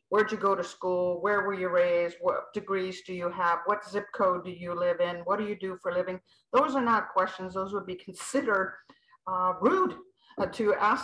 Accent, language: American, English